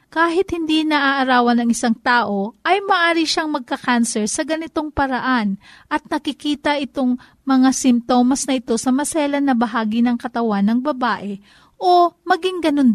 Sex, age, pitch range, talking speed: female, 40-59, 230-305 Hz, 145 wpm